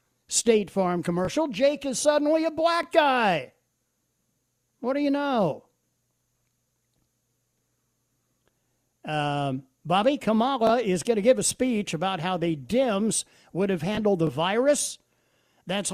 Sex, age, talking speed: male, 50-69, 120 wpm